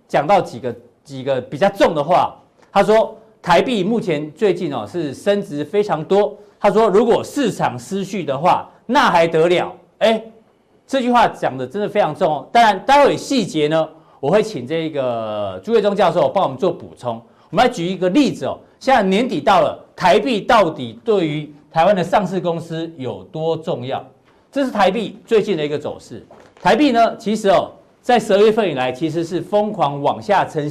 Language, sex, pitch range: Chinese, male, 160-220 Hz